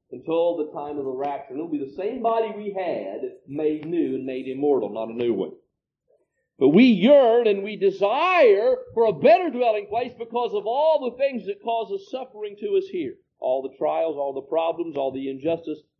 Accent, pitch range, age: American, 125-200 Hz, 50-69